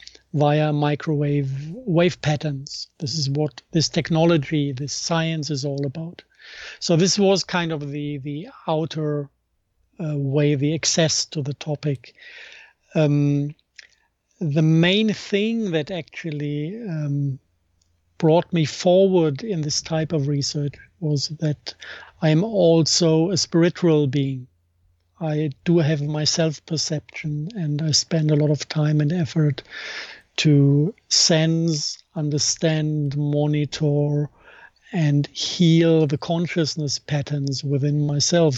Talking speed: 120 wpm